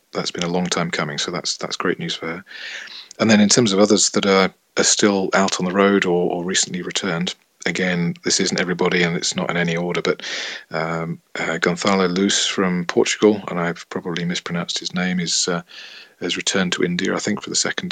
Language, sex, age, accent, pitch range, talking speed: English, male, 40-59, British, 85-95 Hz, 220 wpm